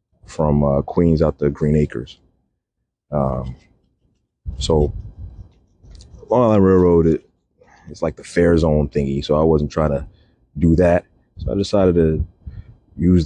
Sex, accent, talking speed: male, American, 140 wpm